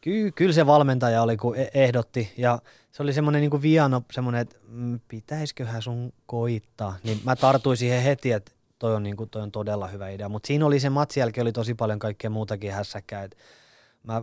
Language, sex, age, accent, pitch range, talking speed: Finnish, male, 20-39, native, 105-125 Hz, 190 wpm